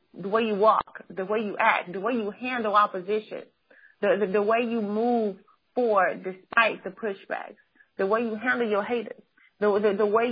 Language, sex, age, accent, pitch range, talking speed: English, female, 30-49, American, 205-245 Hz, 190 wpm